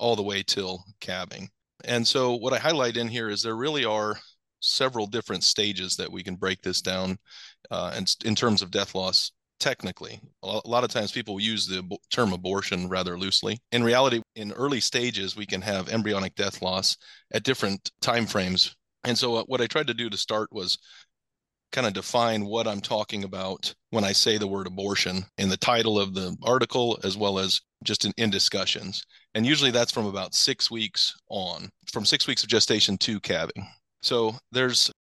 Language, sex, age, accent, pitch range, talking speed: English, male, 30-49, American, 95-120 Hz, 190 wpm